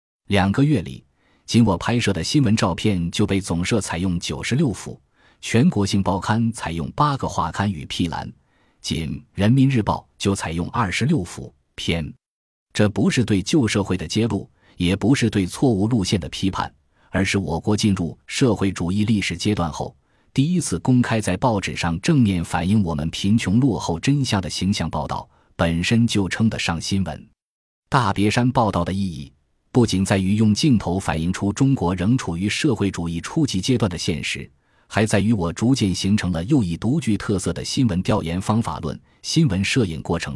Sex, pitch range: male, 85-115 Hz